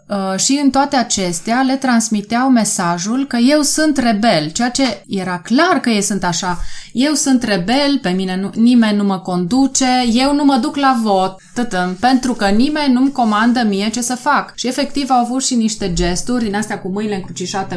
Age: 20-39